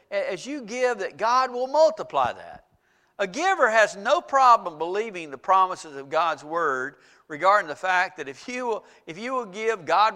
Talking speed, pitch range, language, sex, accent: 170 wpm, 185-250 Hz, English, male, American